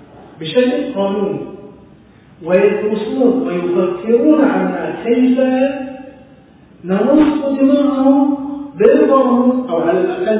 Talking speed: 70 wpm